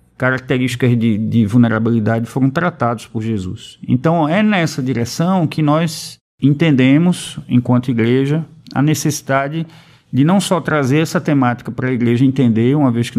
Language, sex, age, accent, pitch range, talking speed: Portuguese, male, 50-69, Brazilian, 115-135 Hz, 145 wpm